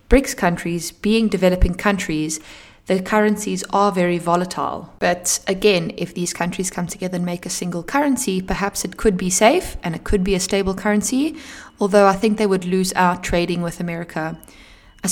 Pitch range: 170-195 Hz